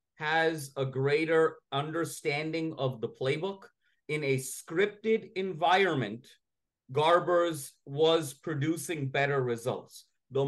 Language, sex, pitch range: English, male, 145-175 Hz